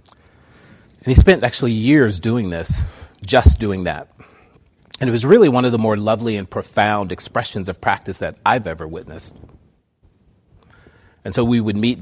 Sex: male